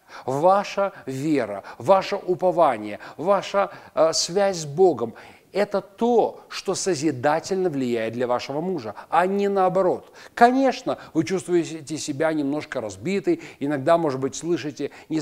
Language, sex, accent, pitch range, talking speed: Russian, male, native, 125-180 Hz, 120 wpm